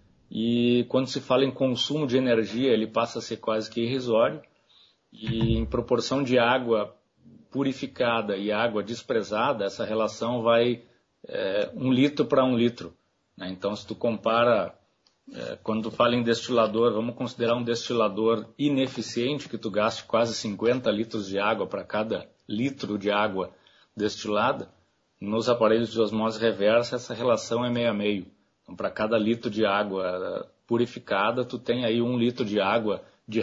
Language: Portuguese